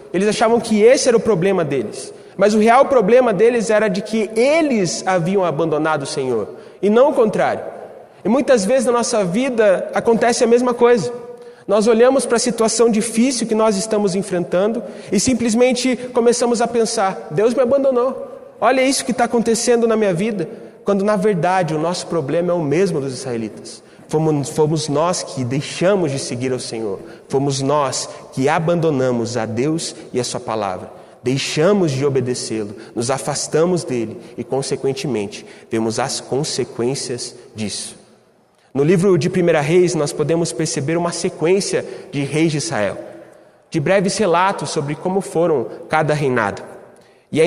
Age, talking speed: 30-49, 160 wpm